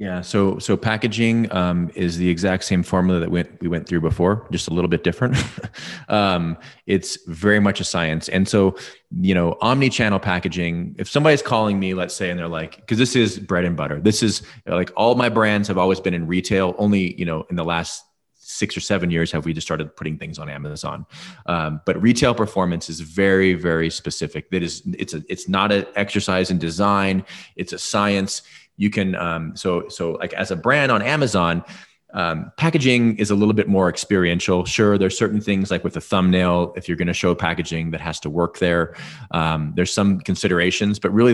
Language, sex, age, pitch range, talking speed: English, male, 20-39, 85-105 Hz, 210 wpm